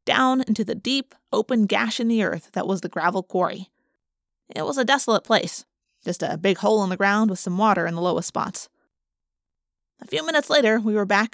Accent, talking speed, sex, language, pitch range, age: American, 210 wpm, female, English, 190-245 Hz, 20-39